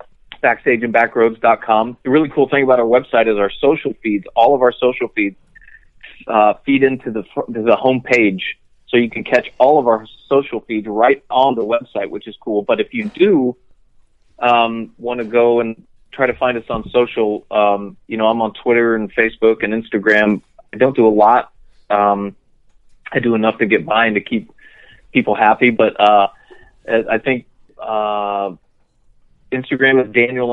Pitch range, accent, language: 105-130 Hz, American, English